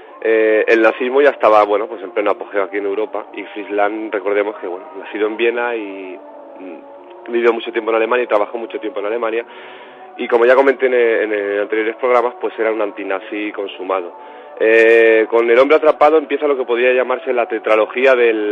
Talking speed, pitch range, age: 200 wpm, 110-130 Hz, 30-49